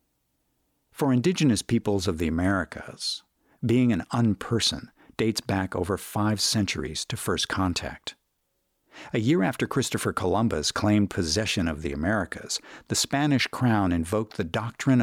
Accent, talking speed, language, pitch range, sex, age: American, 130 wpm, English, 90-120 Hz, male, 50-69